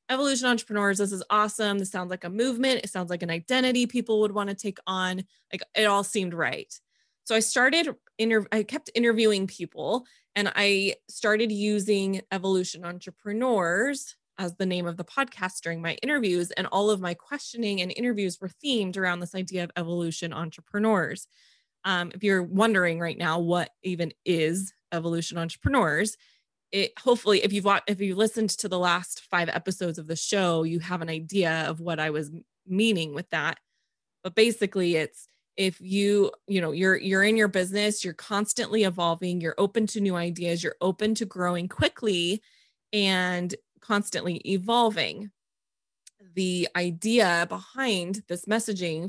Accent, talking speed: American, 165 wpm